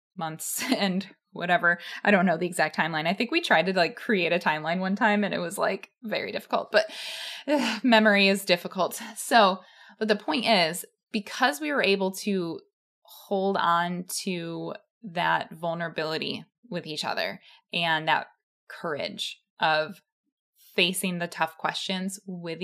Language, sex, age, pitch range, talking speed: English, female, 20-39, 175-220 Hz, 155 wpm